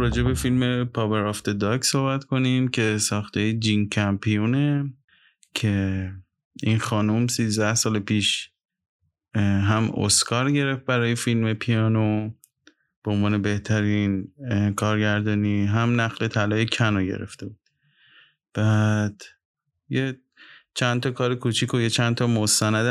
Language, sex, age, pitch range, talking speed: Persian, male, 20-39, 105-125 Hz, 120 wpm